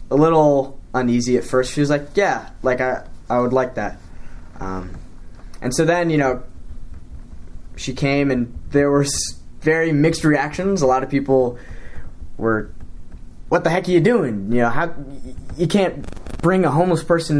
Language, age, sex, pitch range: English, 10-29, male, 105-145 Hz